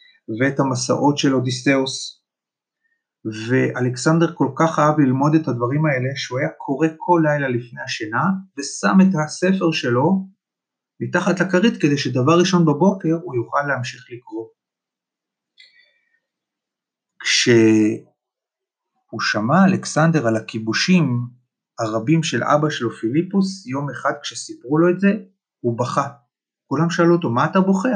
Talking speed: 120 wpm